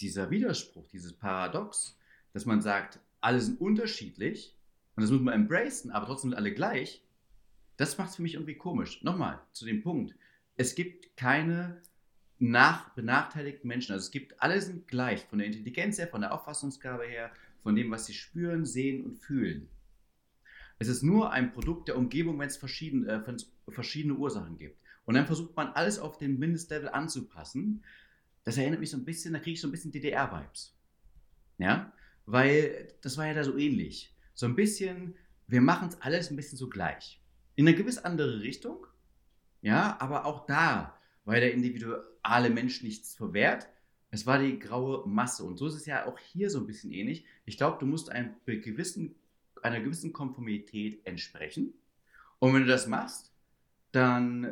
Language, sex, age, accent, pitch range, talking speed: German, male, 40-59, German, 115-160 Hz, 175 wpm